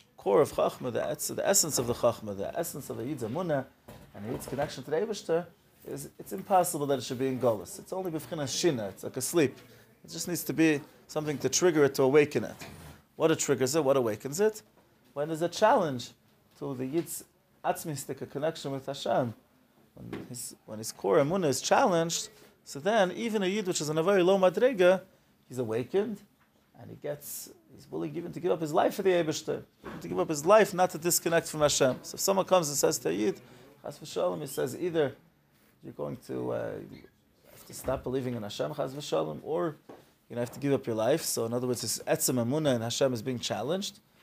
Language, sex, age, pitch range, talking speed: English, male, 30-49, 130-175 Hz, 215 wpm